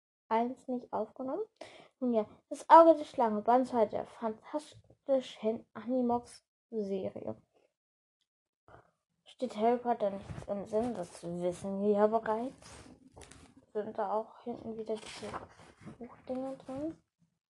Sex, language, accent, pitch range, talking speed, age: female, German, German, 210-240 Hz, 115 wpm, 20-39